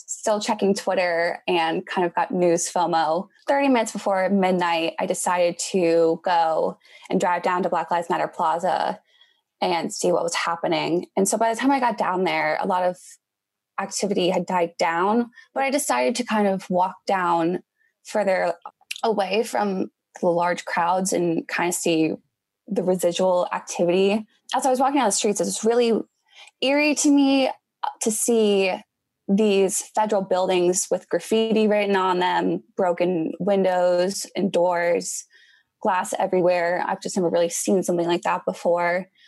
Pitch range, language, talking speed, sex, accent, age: 175-220 Hz, English, 160 wpm, female, American, 20-39